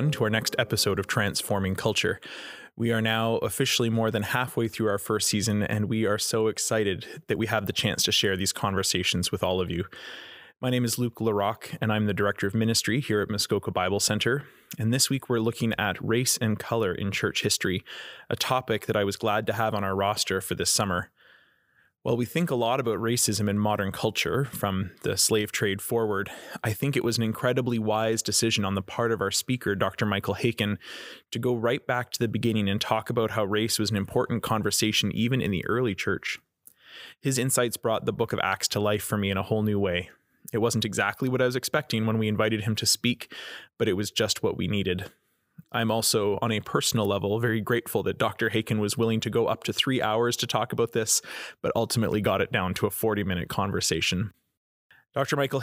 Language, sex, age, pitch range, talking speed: English, male, 20-39, 105-120 Hz, 215 wpm